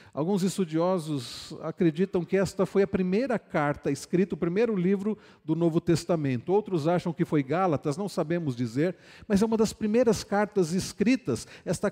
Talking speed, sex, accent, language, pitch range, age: 160 wpm, male, Brazilian, Portuguese, 140-185 Hz, 50-69